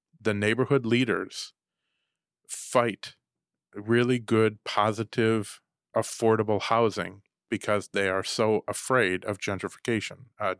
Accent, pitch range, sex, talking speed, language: American, 100-115 Hz, male, 95 wpm, English